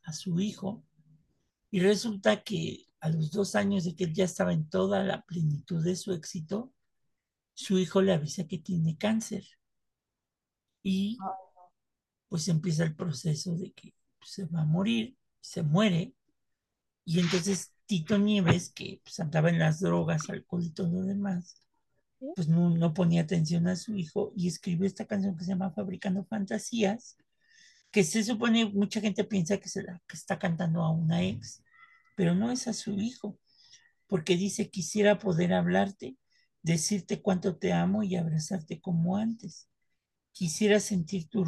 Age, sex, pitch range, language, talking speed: 50-69, male, 170-200 Hz, Spanish, 160 wpm